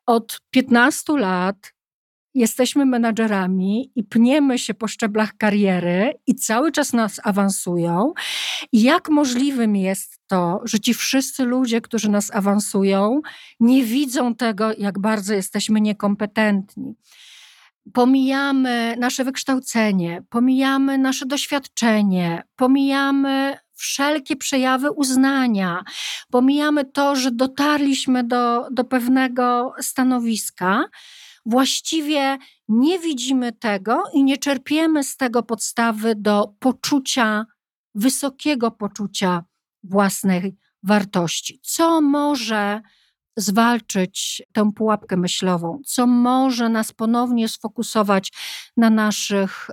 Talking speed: 100 wpm